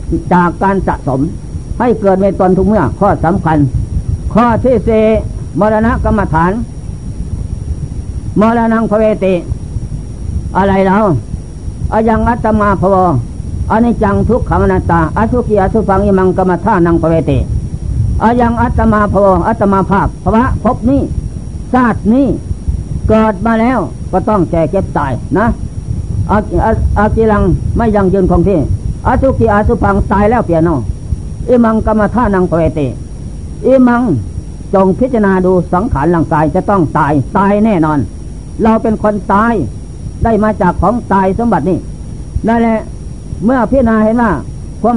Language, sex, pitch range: Thai, female, 170-220 Hz